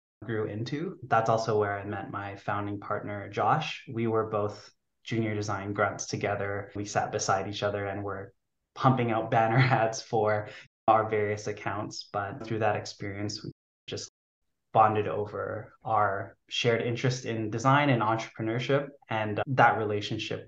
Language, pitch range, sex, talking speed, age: English, 105-120 Hz, male, 150 wpm, 10-29